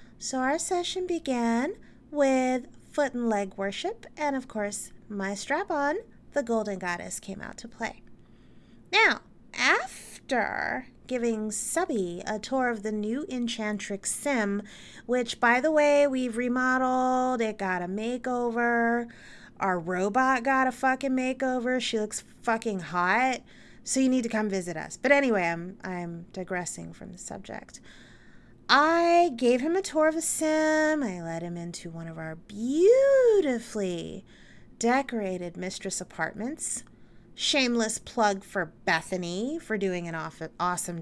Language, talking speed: English, 140 wpm